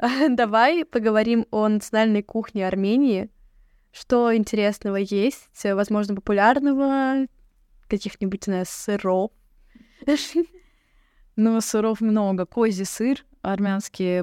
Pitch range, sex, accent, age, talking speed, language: 195-230 Hz, female, native, 20-39, 85 wpm, Russian